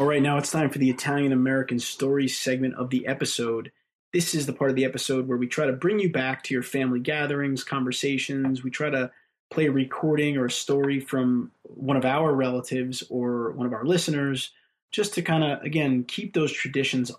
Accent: American